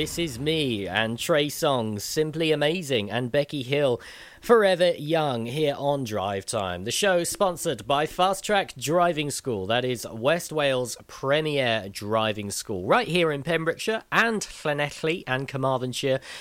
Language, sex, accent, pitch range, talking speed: English, male, British, 125-165 Hz, 150 wpm